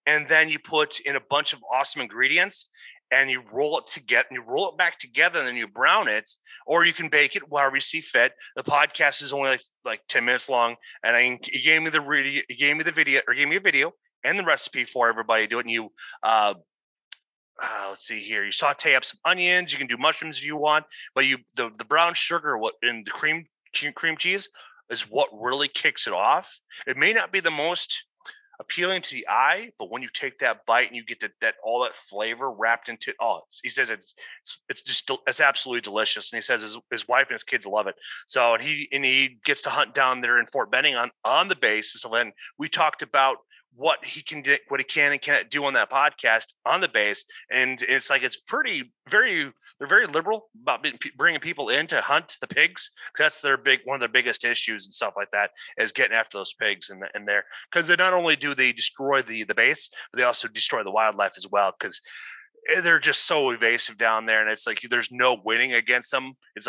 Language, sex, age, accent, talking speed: English, male, 30-49, American, 235 wpm